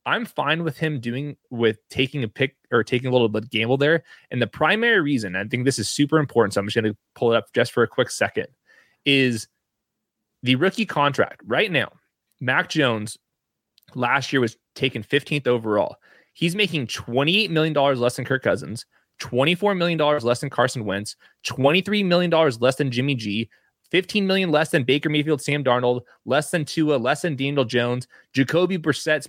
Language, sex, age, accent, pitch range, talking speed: English, male, 20-39, American, 120-155 Hz, 185 wpm